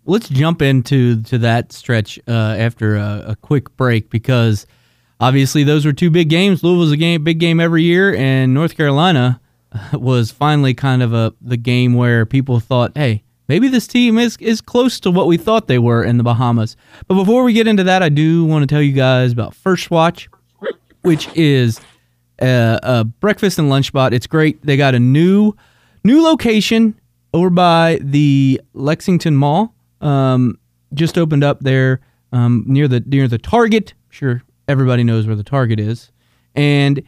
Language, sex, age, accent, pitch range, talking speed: English, male, 20-39, American, 120-175 Hz, 185 wpm